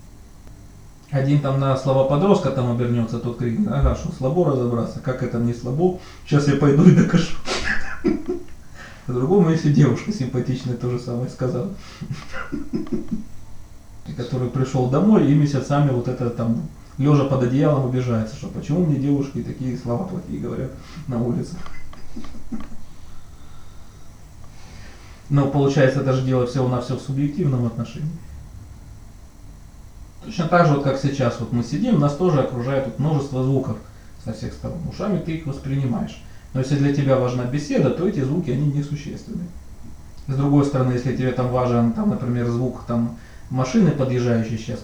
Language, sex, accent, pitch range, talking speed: Russian, male, native, 120-145 Hz, 140 wpm